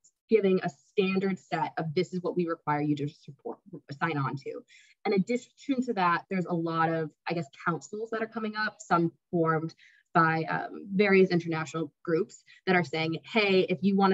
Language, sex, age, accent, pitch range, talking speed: English, female, 20-39, American, 155-190 Hz, 190 wpm